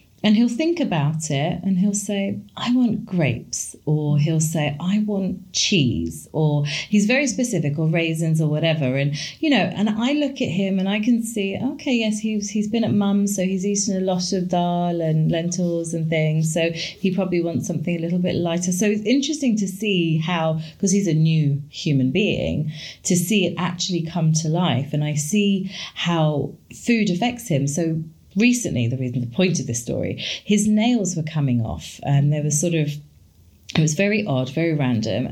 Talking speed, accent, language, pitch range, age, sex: 195 wpm, British, English, 145-190 Hz, 30-49, female